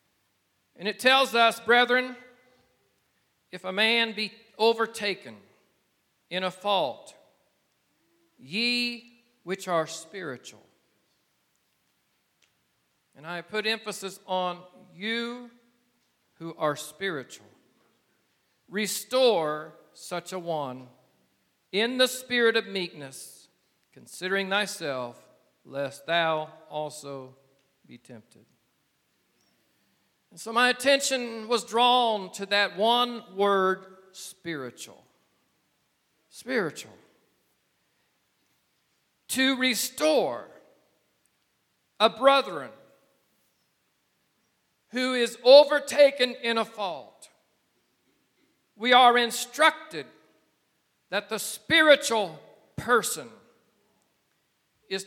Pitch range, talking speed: 170-240 Hz, 80 wpm